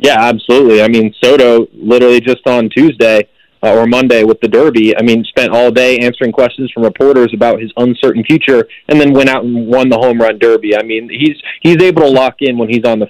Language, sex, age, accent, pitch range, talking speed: English, male, 20-39, American, 115-130 Hz, 230 wpm